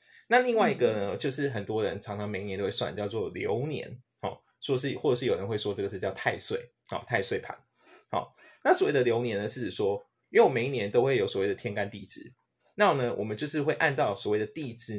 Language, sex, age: Chinese, male, 20-39